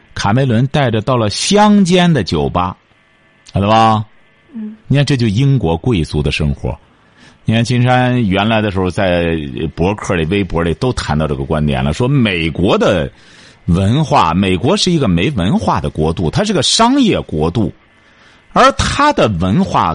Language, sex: Chinese, male